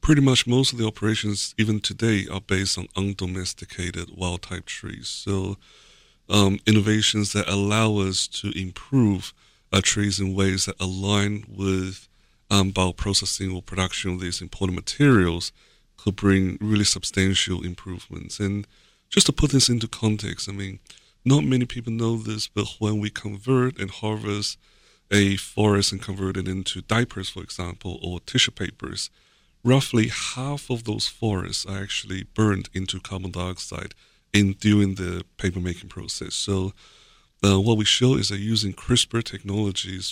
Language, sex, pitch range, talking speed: English, male, 95-105 Hz, 150 wpm